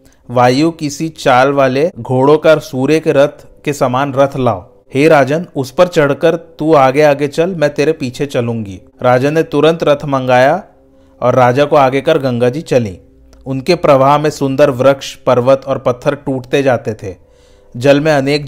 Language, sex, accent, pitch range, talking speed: Hindi, male, native, 125-145 Hz, 170 wpm